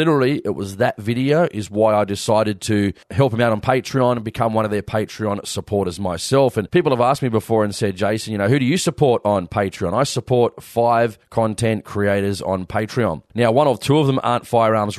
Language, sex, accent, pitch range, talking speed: English, male, Australian, 100-120 Hz, 220 wpm